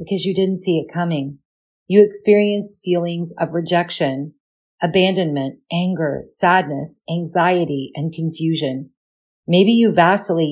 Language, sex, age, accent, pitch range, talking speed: English, female, 40-59, American, 155-190 Hz, 115 wpm